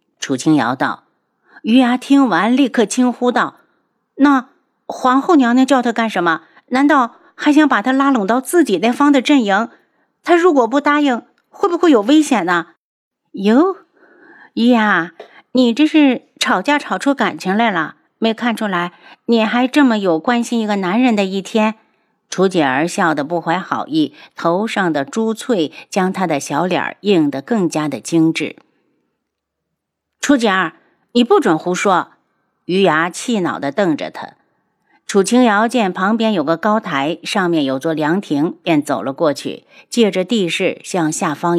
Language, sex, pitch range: Chinese, female, 175-260 Hz